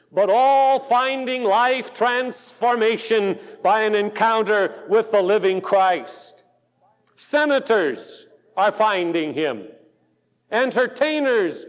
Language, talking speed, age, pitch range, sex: English, 85 wpm, 50-69, 215-310 Hz, male